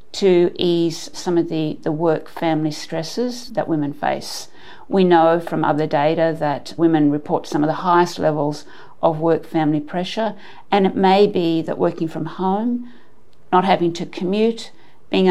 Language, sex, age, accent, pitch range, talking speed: English, female, 50-69, Australian, 165-200 Hz, 165 wpm